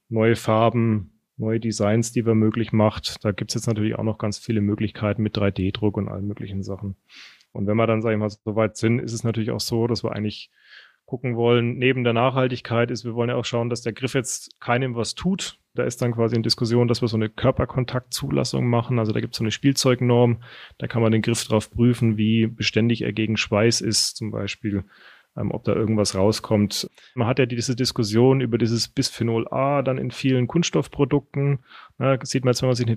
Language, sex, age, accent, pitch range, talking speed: German, male, 30-49, German, 110-125 Hz, 215 wpm